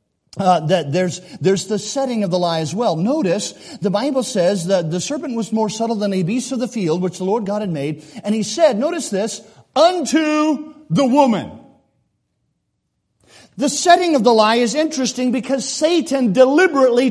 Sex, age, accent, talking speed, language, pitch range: male, 50-69, American, 180 wpm, English, 205-270 Hz